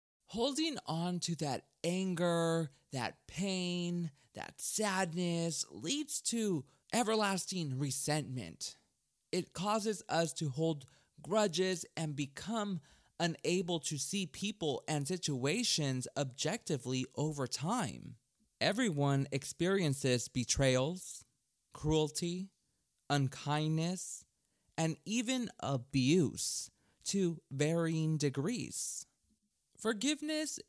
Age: 20-39